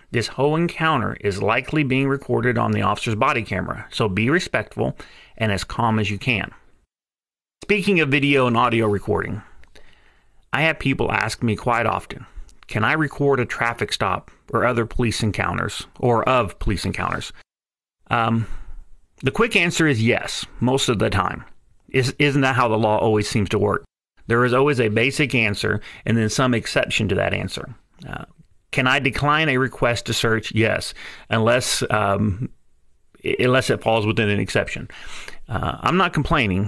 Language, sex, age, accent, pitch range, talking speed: English, male, 40-59, American, 105-130 Hz, 165 wpm